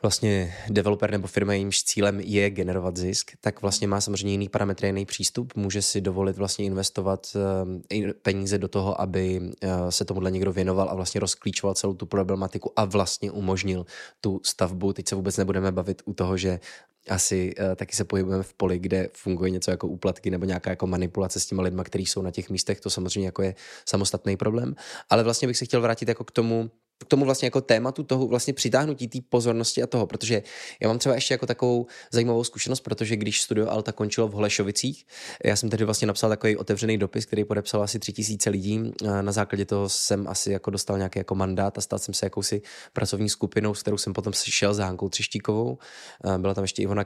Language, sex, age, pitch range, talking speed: Czech, male, 20-39, 95-105 Hz, 205 wpm